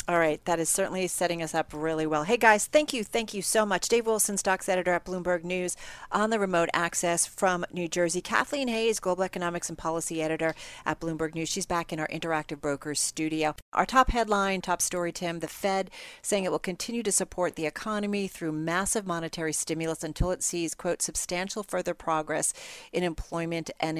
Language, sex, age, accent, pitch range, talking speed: English, female, 40-59, American, 160-195 Hz, 200 wpm